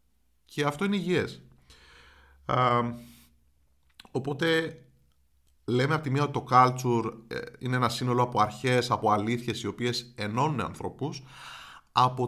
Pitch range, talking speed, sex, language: 110-145 Hz, 120 wpm, male, Greek